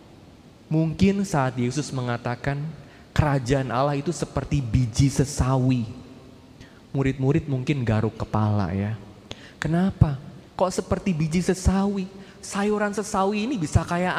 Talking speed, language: 105 wpm, Indonesian